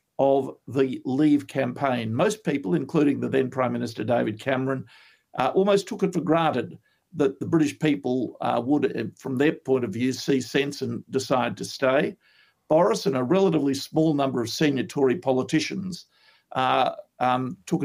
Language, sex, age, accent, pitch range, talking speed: English, male, 50-69, Australian, 130-160 Hz, 165 wpm